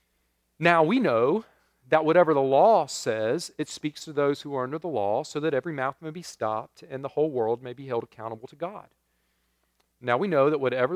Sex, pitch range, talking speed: male, 130-170 Hz, 215 wpm